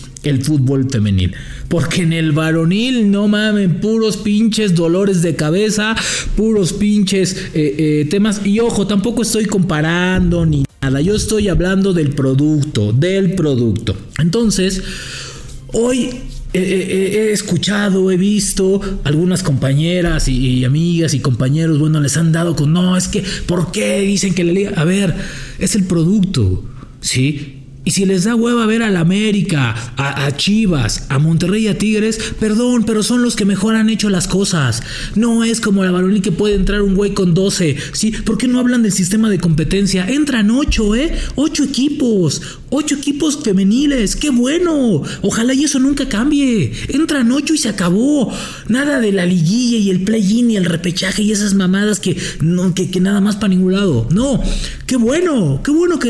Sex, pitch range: male, 160-220 Hz